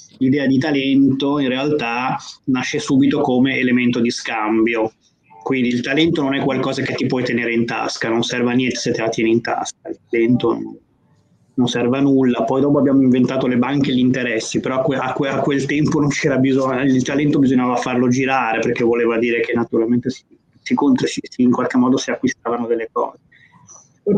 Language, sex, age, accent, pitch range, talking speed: Italian, male, 20-39, native, 125-140 Hz, 190 wpm